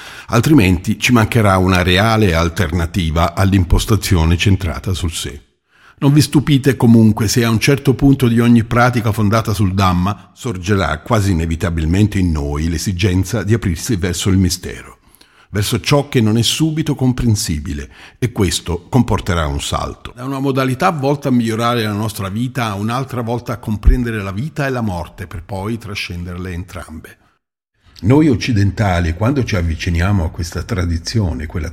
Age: 50-69